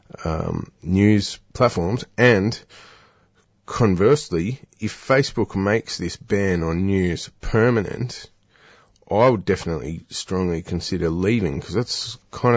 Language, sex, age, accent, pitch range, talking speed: English, male, 20-39, Australian, 90-105 Hz, 105 wpm